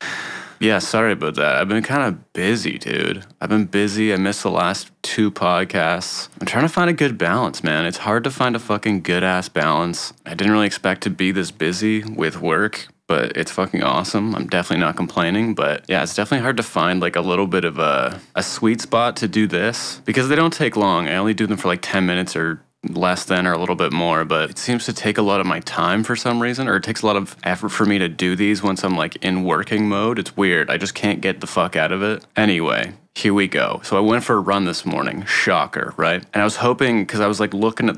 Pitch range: 90-110 Hz